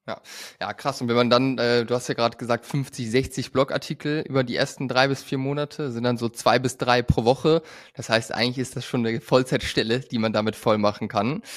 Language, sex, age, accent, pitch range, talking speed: German, male, 20-39, German, 115-145 Hz, 235 wpm